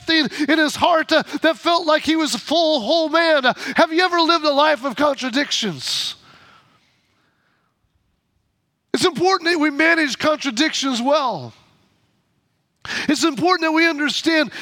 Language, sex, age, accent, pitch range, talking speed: English, male, 30-49, American, 280-325 Hz, 140 wpm